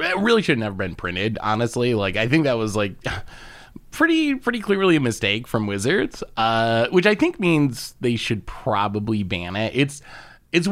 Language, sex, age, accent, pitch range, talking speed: English, male, 20-39, American, 110-155 Hz, 185 wpm